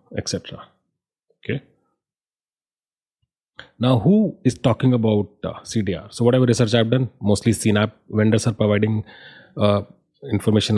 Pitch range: 95-110 Hz